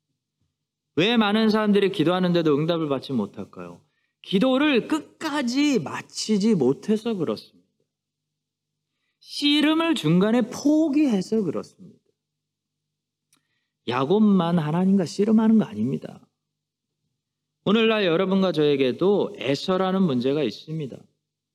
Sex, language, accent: male, Korean, native